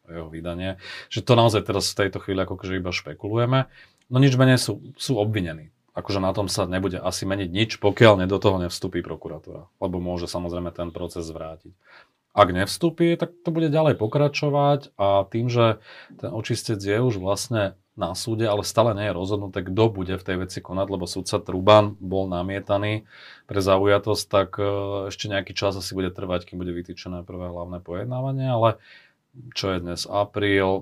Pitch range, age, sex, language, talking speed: 90-110 Hz, 30-49, male, Slovak, 180 wpm